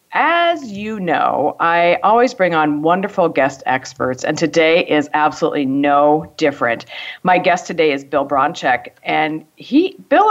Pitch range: 155-225 Hz